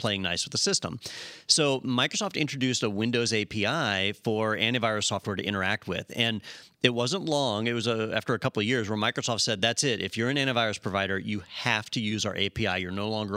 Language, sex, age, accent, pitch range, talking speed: English, male, 40-59, American, 100-125 Hz, 215 wpm